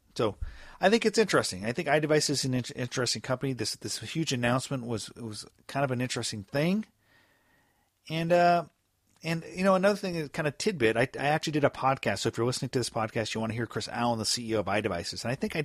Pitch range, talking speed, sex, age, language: 100-140 Hz, 235 wpm, male, 40-59, English